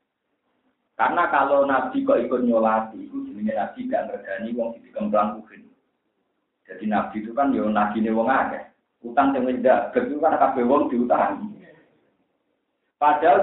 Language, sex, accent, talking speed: Indonesian, male, native, 120 wpm